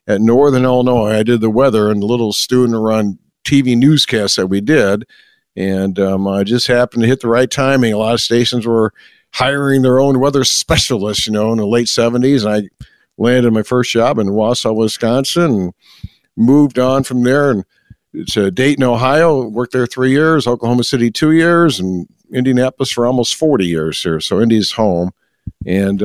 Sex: male